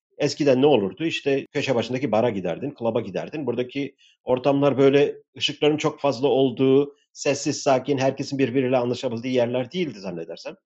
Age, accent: 50-69, native